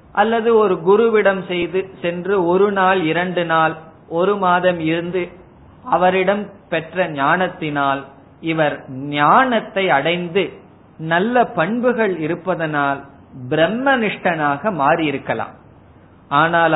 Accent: native